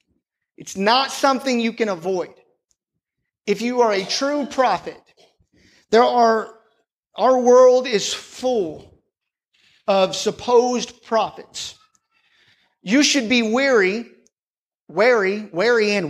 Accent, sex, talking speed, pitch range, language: American, male, 105 wpm, 200-260 Hz, English